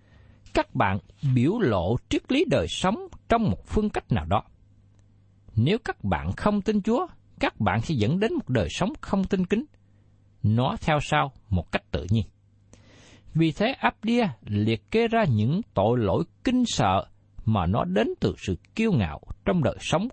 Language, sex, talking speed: Vietnamese, male, 180 wpm